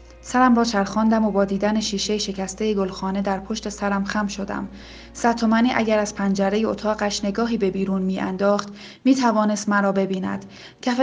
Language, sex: Persian, female